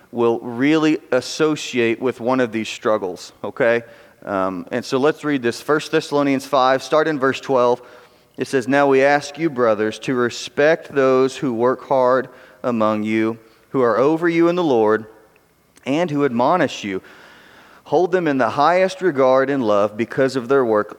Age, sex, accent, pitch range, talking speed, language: 30-49, male, American, 125-160 Hz, 170 wpm, English